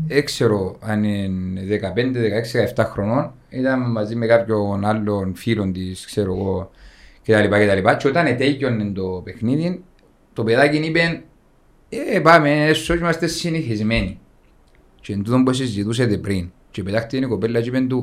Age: 30-49